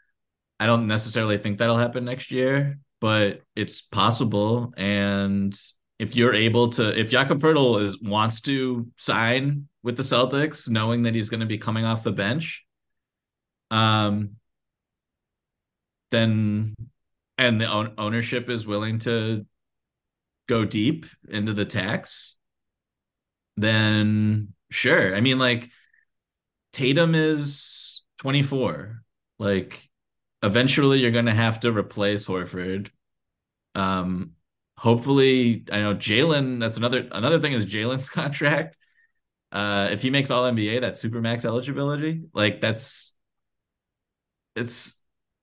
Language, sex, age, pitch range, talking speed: English, male, 30-49, 105-130 Hz, 120 wpm